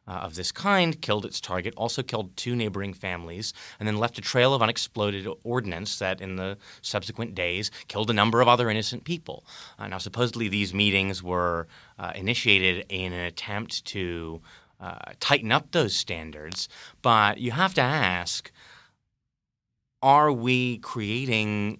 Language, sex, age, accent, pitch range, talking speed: English, male, 30-49, American, 95-115 Hz, 155 wpm